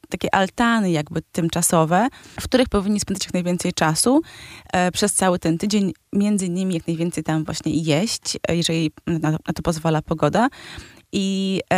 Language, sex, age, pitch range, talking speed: Polish, female, 20-39, 160-185 Hz, 150 wpm